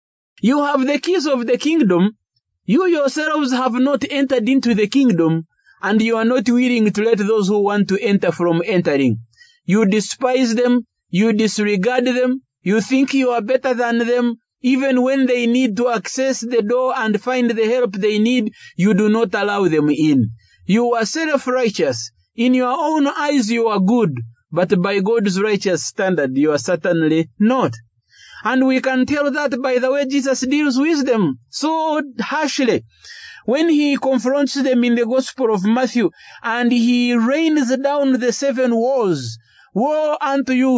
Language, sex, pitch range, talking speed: English, male, 205-270 Hz, 170 wpm